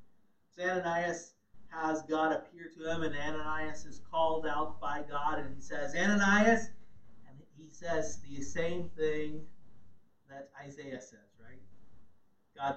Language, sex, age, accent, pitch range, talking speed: English, male, 30-49, American, 135-175 Hz, 130 wpm